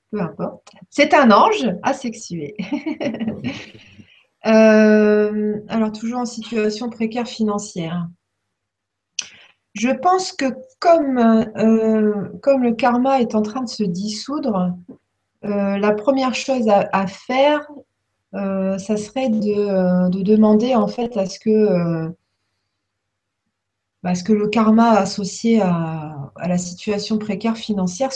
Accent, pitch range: French, 180-225 Hz